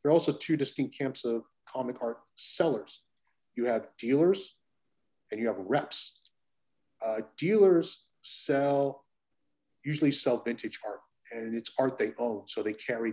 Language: Danish